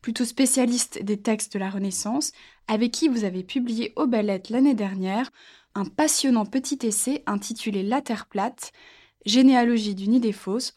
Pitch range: 215-275 Hz